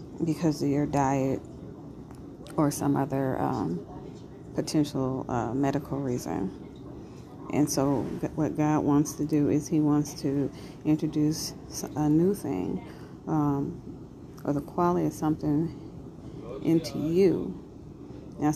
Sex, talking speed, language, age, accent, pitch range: female, 115 wpm, English, 40-59, American, 140-150 Hz